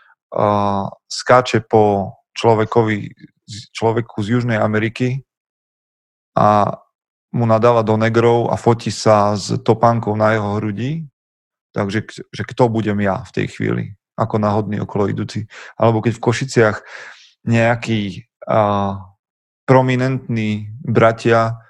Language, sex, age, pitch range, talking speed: Slovak, male, 30-49, 105-120 Hz, 110 wpm